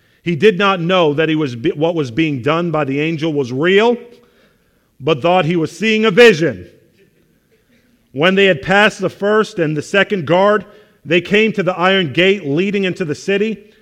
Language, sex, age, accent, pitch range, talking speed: English, male, 40-59, American, 155-195 Hz, 185 wpm